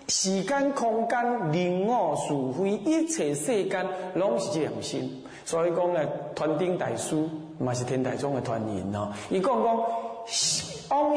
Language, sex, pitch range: Chinese, male, 150-235 Hz